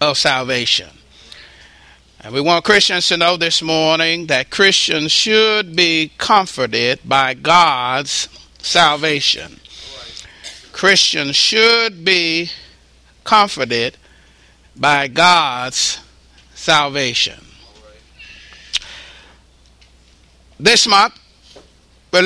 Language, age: English, 60-79